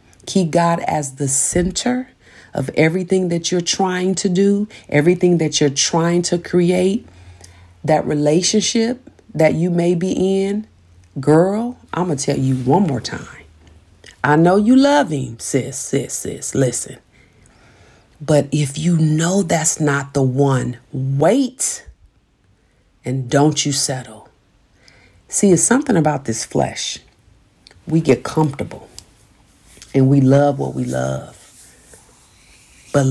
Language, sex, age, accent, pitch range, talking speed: English, female, 40-59, American, 130-175 Hz, 130 wpm